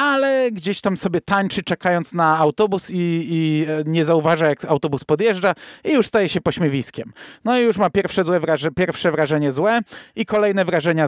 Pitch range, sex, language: 160-225 Hz, male, Polish